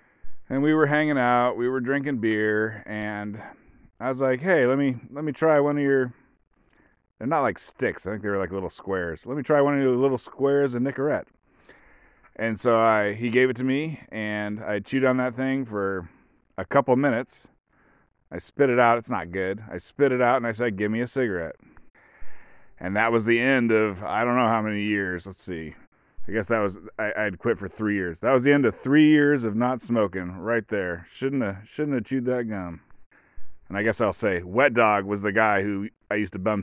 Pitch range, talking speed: 95-125 Hz, 225 wpm